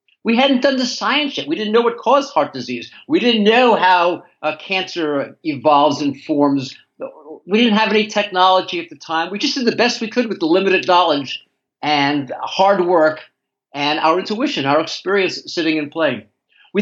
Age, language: 50-69, English